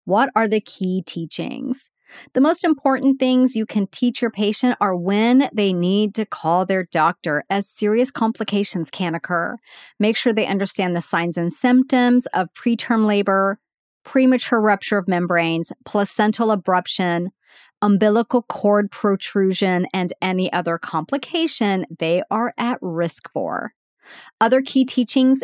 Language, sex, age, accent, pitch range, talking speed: English, female, 40-59, American, 185-250 Hz, 140 wpm